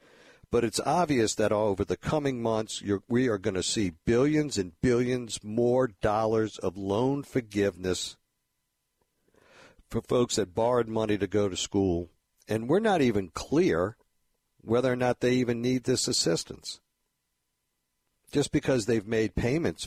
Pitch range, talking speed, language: 100-125 Hz, 145 wpm, English